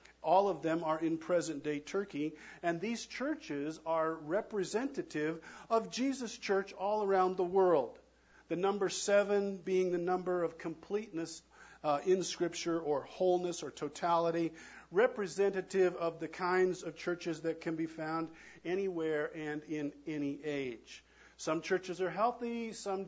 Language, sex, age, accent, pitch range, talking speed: English, male, 50-69, American, 145-185 Hz, 140 wpm